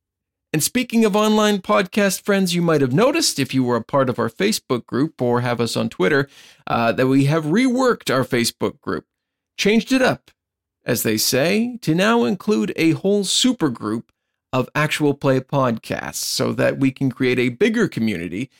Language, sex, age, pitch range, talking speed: English, male, 50-69, 130-185 Hz, 185 wpm